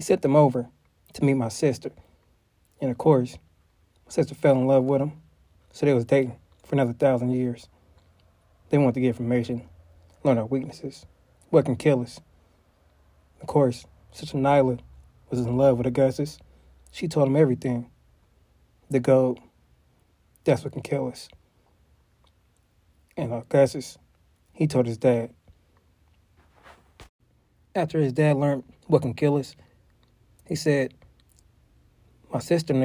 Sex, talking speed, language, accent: male, 140 wpm, English, American